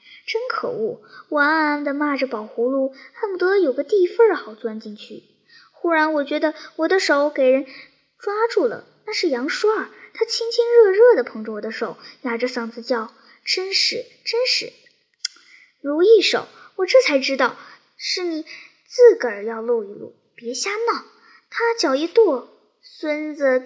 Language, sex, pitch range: Chinese, male, 260-410 Hz